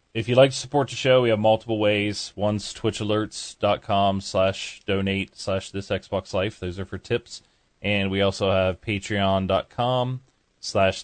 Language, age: English, 30-49